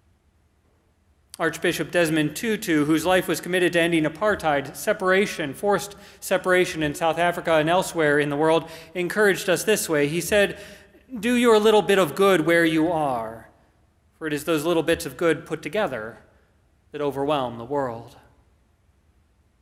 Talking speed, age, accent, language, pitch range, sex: 155 wpm, 30-49, American, English, 135-180 Hz, male